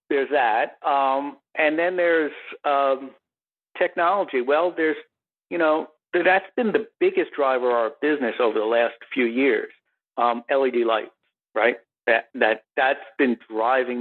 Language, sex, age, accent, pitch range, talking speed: English, male, 50-69, American, 120-155 Hz, 145 wpm